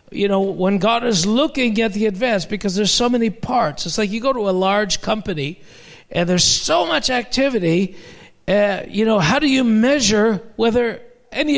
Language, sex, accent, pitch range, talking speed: English, male, American, 195-250 Hz, 185 wpm